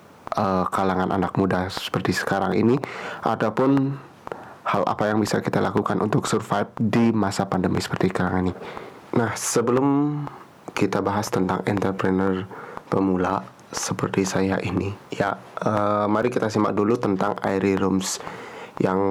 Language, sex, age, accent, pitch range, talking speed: Indonesian, male, 30-49, native, 95-115 Hz, 130 wpm